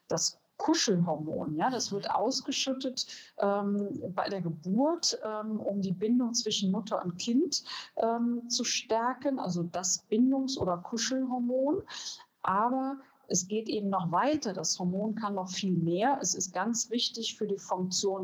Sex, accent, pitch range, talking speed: female, German, 185-240 Hz, 150 wpm